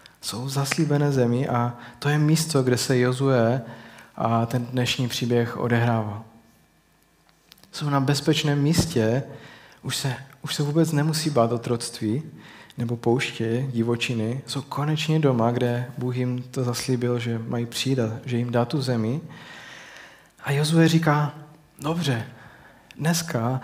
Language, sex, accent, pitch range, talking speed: Czech, male, native, 120-145 Hz, 130 wpm